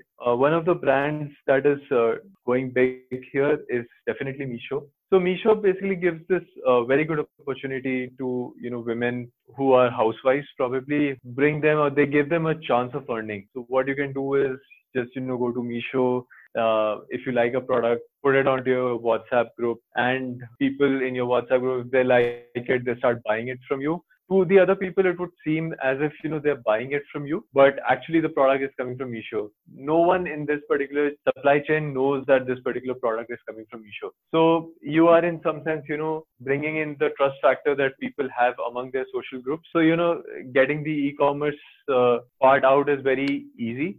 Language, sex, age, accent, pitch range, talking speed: English, male, 20-39, Indian, 125-150 Hz, 205 wpm